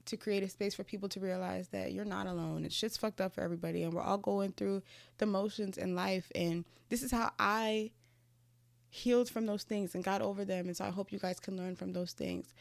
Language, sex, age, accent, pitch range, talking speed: English, female, 20-39, American, 140-195 Hz, 245 wpm